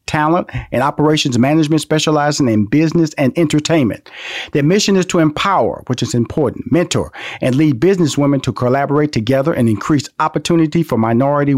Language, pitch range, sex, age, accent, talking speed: English, 120-155 Hz, male, 40-59, American, 150 wpm